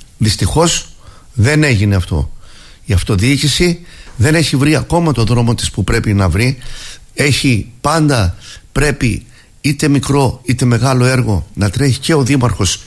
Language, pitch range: Greek, 110-140 Hz